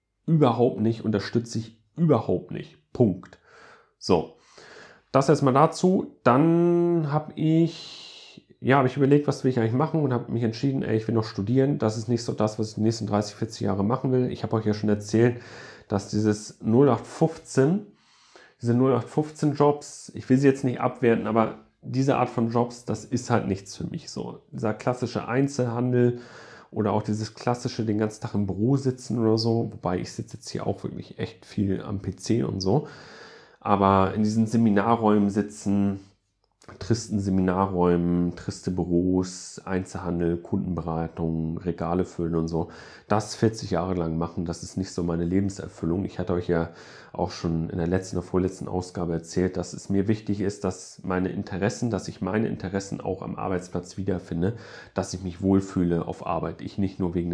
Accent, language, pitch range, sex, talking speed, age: German, German, 90-120 Hz, male, 175 wpm, 40-59